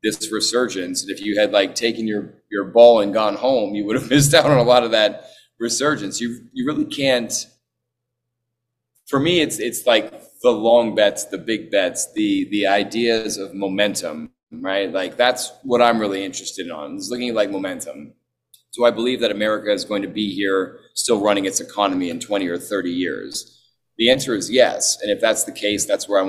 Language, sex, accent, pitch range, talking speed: English, male, American, 105-125 Hz, 200 wpm